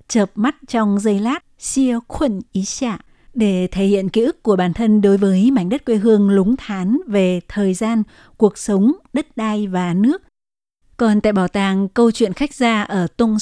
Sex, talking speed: female, 195 wpm